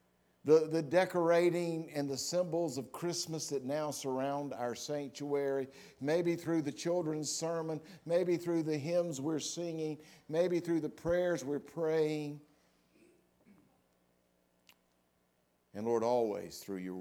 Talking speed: 125 wpm